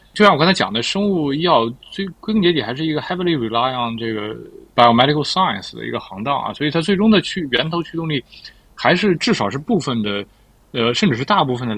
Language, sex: Chinese, male